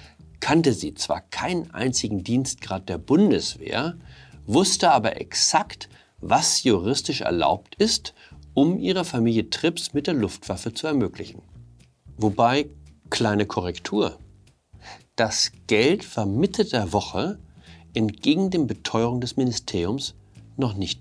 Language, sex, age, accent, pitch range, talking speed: German, male, 50-69, German, 95-130 Hz, 115 wpm